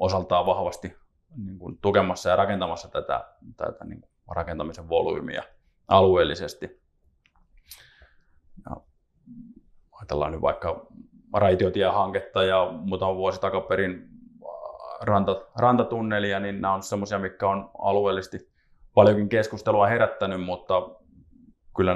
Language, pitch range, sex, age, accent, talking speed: Finnish, 90-110 Hz, male, 20-39, native, 100 wpm